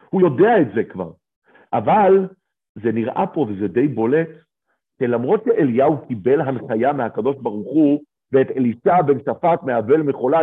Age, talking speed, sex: 50-69, 145 wpm, male